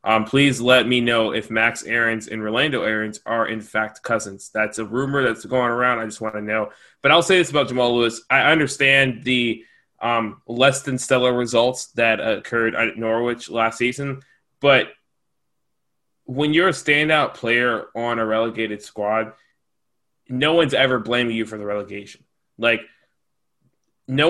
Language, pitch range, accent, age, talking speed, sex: English, 110-130 Hz, American, 20-39, 165 wpm, male